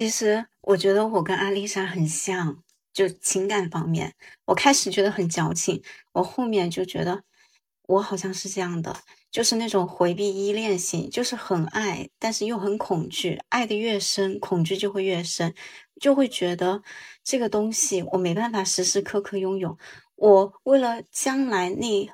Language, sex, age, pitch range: Chinese, female, 20-39, 185-225 Hz